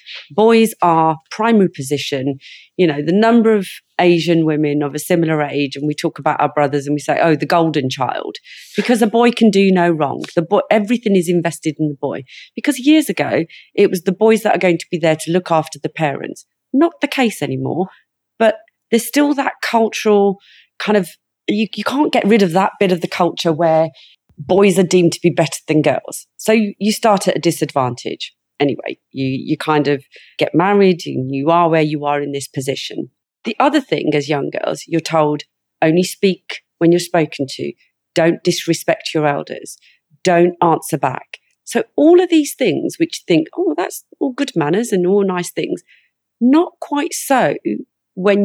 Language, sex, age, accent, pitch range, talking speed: English, female, 40-59, British, 155-220 Hz, 195 wpm